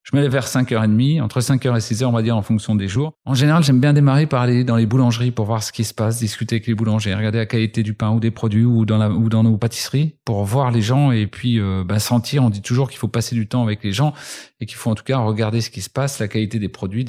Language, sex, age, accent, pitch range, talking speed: French, male, 40-59, French, 110-125 Hz, 300 wpm